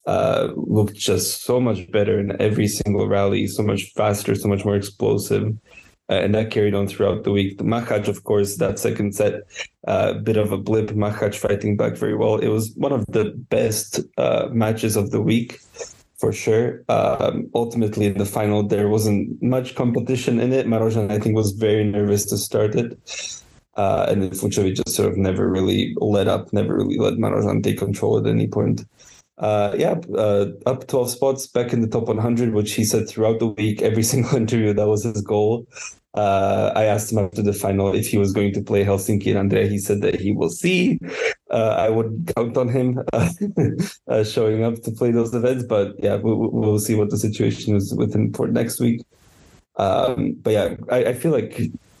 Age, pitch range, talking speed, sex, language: 20-39, 100-115 Hz, 205 wpm, male, English